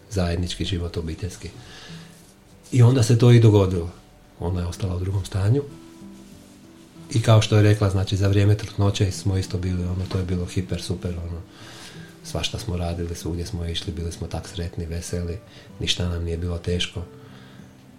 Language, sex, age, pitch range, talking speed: Croatian, male, 40-59, 90-110 Hz, 165 wpm